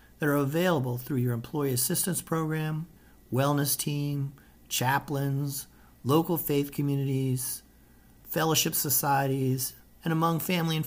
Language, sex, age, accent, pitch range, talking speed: English, male, 50-69, American, 125-170 Hz, 110 wpm